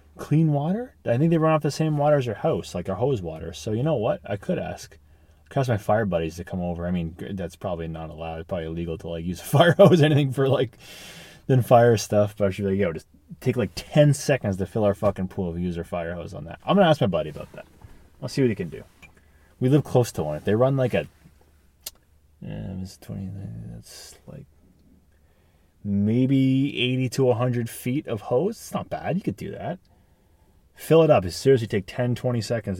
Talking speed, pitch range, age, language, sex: 240 wpm, 85-135 Hz, 20-39, English, male